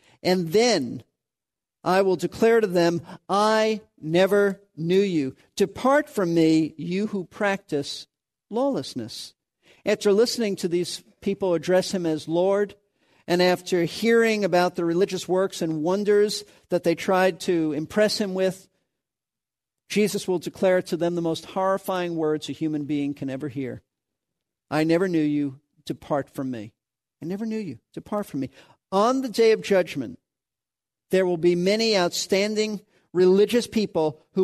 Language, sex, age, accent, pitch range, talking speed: English, male, 50-69, American, 170-220 Hz, 150 wpm